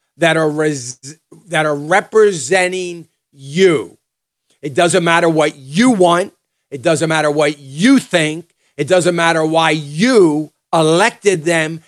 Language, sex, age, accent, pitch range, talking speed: English, male, 40-59, American, 150-185 Hz, 130 wpm